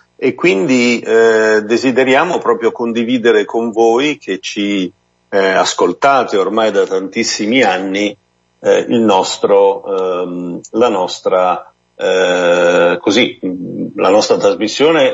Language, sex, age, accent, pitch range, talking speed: Italian, male, 50-69, native, 95-115 Hz, 105 wpm